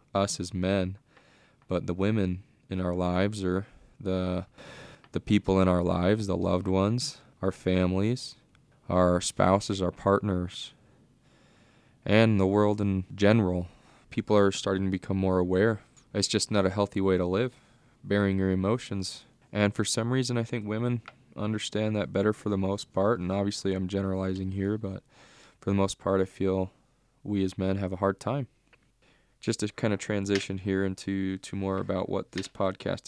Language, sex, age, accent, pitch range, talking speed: English, male, 20-39, American, 95-105 Hz, 170 wpm